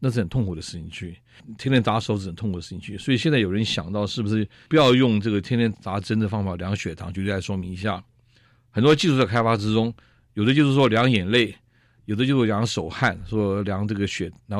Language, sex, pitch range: Chinese, male, 100-125 Hz